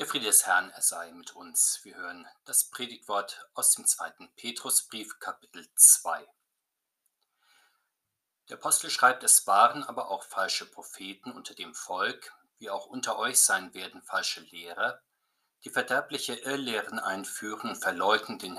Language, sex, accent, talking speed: German, male, German, 145 wpm